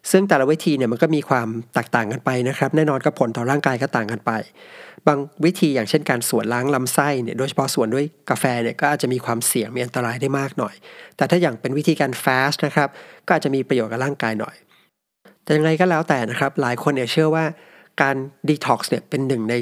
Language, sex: Thai, male